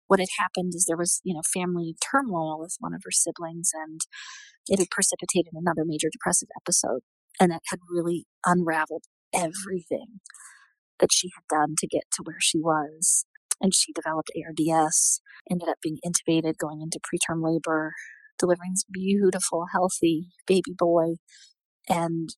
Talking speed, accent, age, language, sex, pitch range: 155 wpm, American, 40-59, English, female, 170-205 Hz